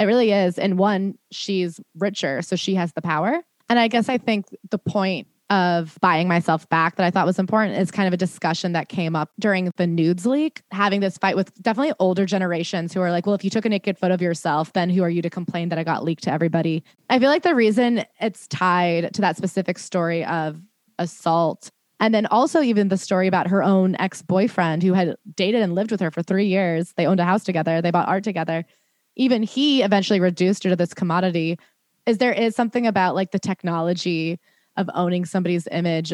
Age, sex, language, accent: 20-39, female, English, American